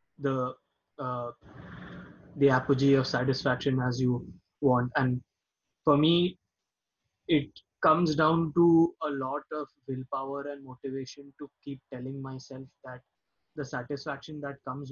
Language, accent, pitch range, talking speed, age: English, Indian, 125-145 Hz, 125 wpm, 20-39